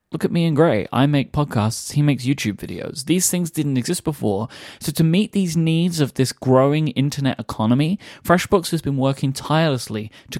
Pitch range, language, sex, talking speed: 120-165 Hz, English, male, 190 wpm